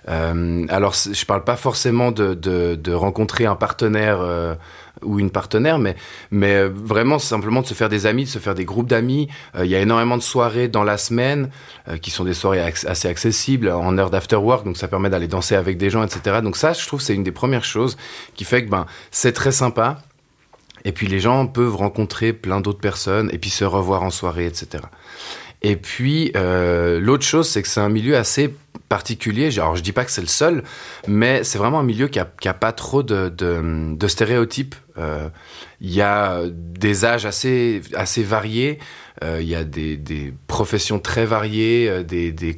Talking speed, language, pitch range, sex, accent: 210 wpm, French, 95-120 Hz, male, French